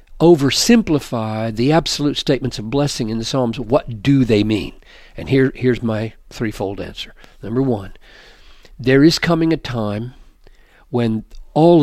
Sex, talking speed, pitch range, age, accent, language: male, 140 wpm, 110-140 Hz, 50-69, American, English